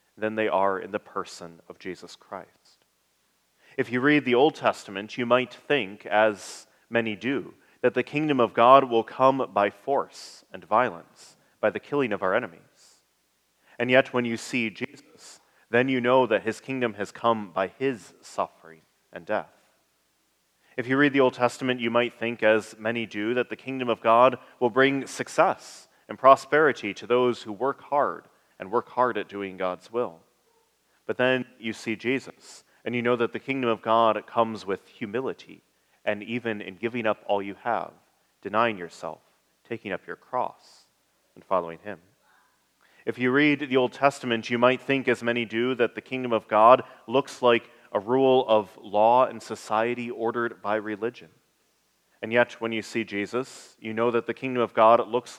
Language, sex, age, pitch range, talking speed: English, male, 30-49, 110-125 Hz, 180 wpm